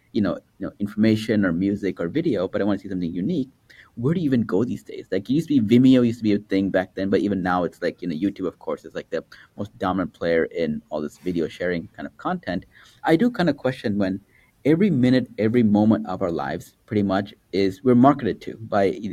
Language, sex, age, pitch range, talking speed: English, male, 30-49, 105-125 Hz, 255 wpm